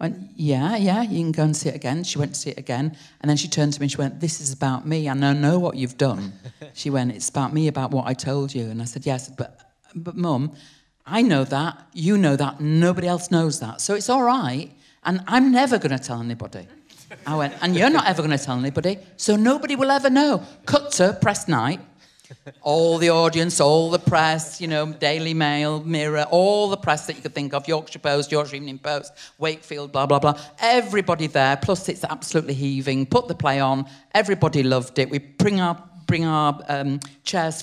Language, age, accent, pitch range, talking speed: English, 50-69, British, 140-175 Hz, 225 wpm